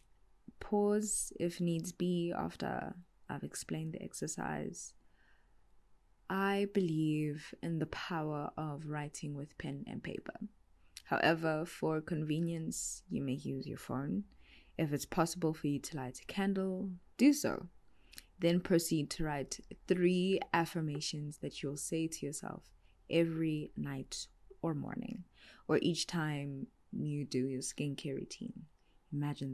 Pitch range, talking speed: 135-175 Hz, 130 wpm